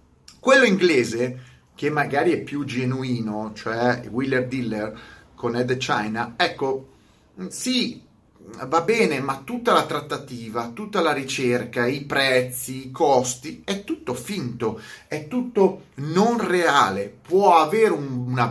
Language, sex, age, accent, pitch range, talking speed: Italian, male, 30-49, native, 120-180 Hz, 130 wpm